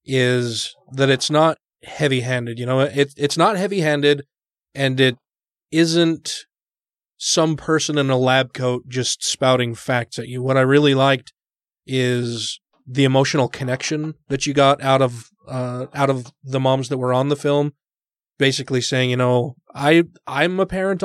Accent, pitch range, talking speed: American, 125-145 Hz, 165 wpm